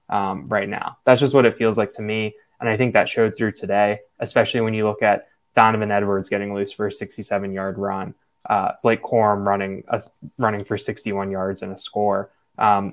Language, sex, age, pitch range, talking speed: English, male, 20-39, 105-115 Hz, 210 wpm